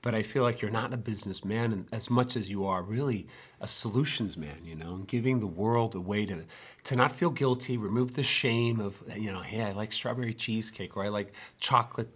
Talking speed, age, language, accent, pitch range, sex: 220 wpm, 40-59, English, American, 100-120 Hz, male